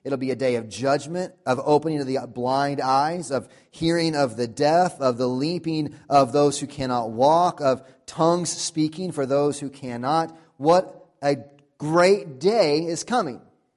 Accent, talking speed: American, 165 wpm